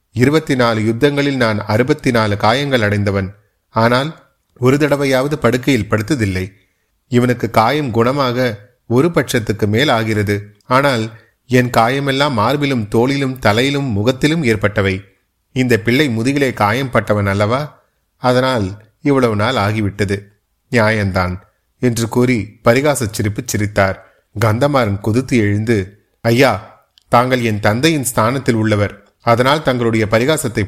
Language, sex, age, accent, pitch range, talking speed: Tamil, male, 30-49, native, 105-130 Hz, 105 wpm